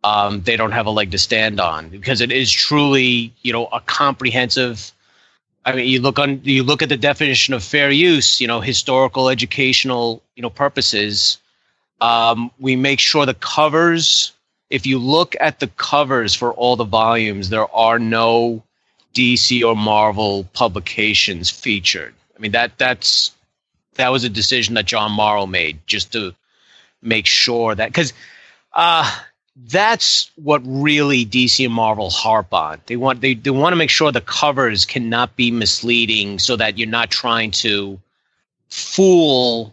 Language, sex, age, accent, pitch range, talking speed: English, male, 30-49, American, 110-135 Hz, 165 wpm